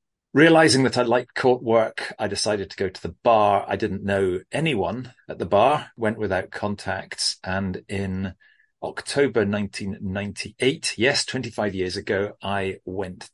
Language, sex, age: English, male, 40-59